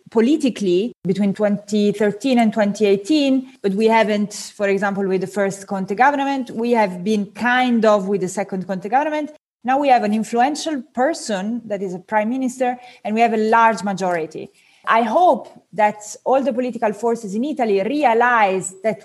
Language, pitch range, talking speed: English, 200-255 Hz, 165 wpm